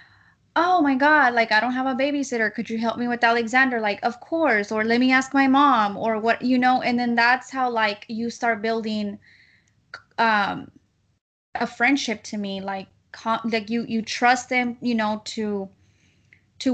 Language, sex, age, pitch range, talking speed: English, female, 20-39, 205-250 Hz, 185 wpm